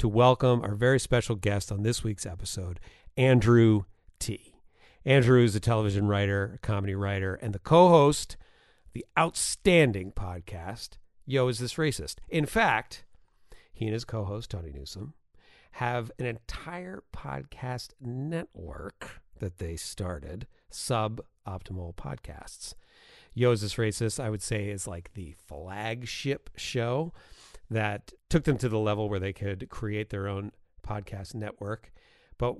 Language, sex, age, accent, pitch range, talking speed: English, male, 40-59, American, 100-130 Hz, 135 wpm